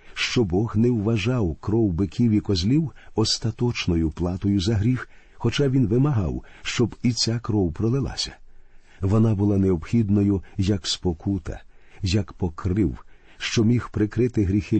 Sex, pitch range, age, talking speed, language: male, 90-115 Hz, 50-69, 125 wpm, Ukrainian